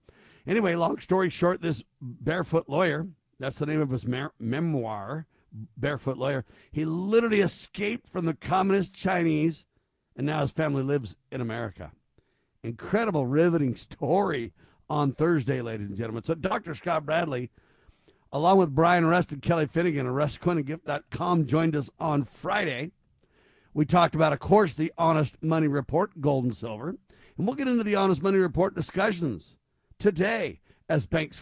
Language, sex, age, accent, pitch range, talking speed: English, male, 50-69, American, 135-180 Hz, 150 wpm